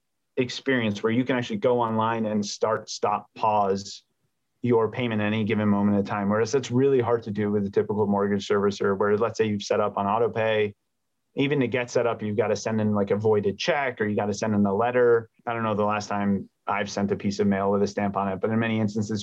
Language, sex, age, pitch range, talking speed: English, male, 30-49, 105-125 Hz, 250 wpm